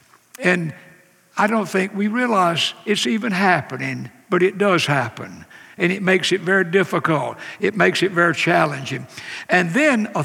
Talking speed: 160 wpm